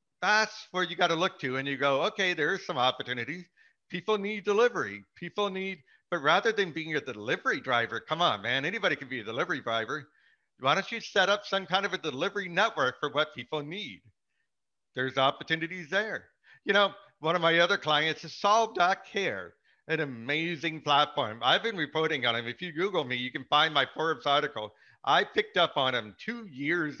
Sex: male